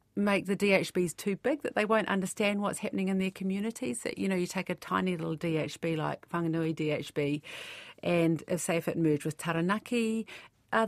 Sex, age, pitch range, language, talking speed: female, 40-59, 160-195 Hz, English, 190 wpm